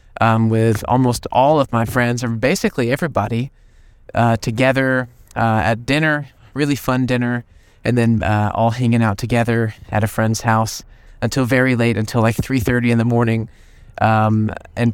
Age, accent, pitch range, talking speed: 20-39, American, 110-125 Hz, 160 wpm